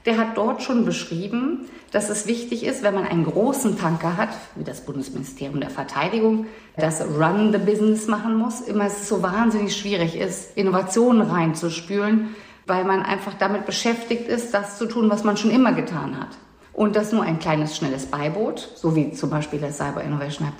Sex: female